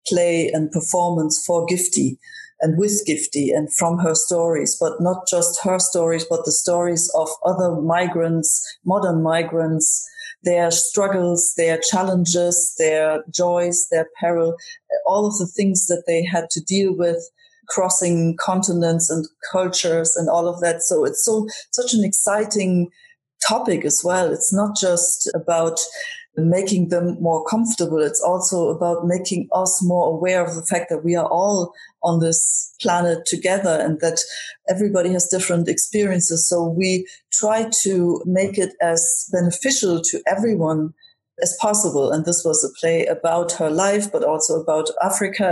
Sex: female